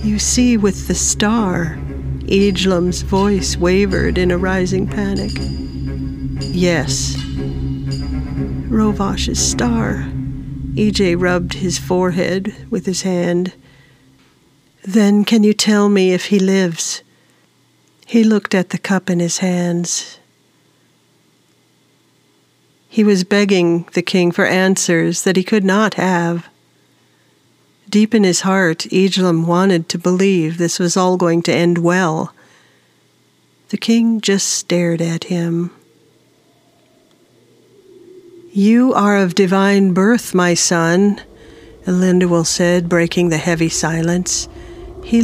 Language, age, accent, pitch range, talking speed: English, 50-69, American, 170-200 Hz, 115 wpm